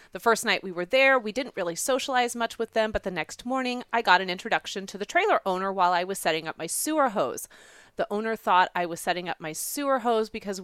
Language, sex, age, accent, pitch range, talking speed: English, female, 30-49, American, 175-235 Hz, 250 wpm